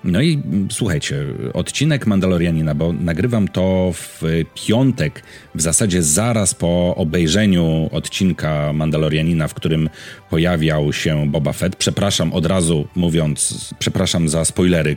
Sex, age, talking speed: male, 40-59, 120 wpm